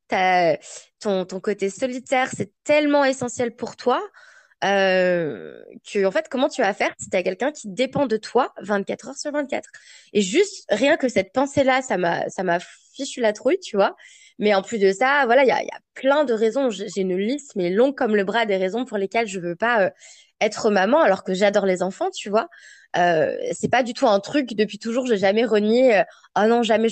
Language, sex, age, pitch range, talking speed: French, female, 20-39, 200-260 Hz, 220 wpm